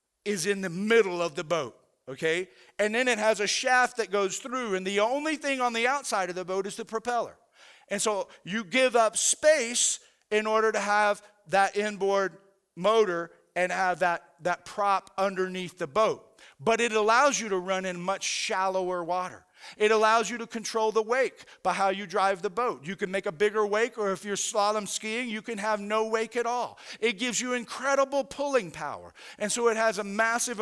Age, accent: 50-69, American